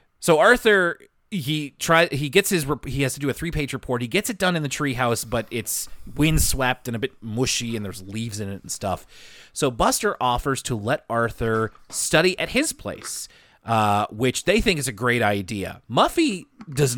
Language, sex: English, male